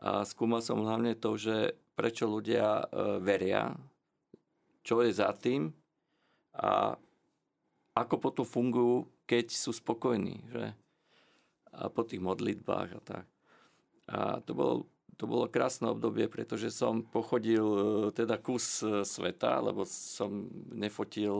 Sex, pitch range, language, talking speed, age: male, 105-125 Hz, Slovak, 120 wpm, 40-59